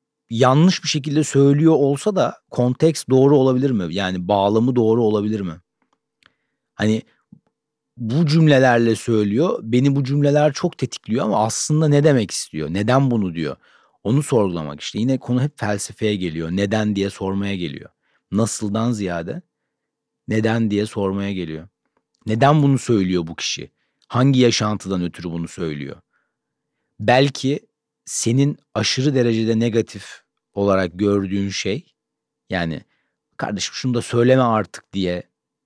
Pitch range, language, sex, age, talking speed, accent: 100-130 Hz, Turkish, male, 40-59, 125 wpm, native